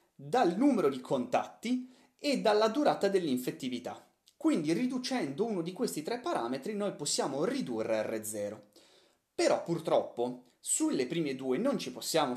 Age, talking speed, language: 30-49, 130 wpm, Italian